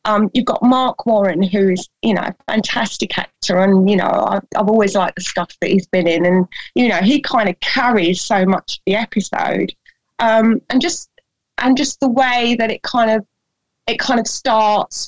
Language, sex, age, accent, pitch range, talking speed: English, female, 20-39, British, 190-230 Hz, 205 wpm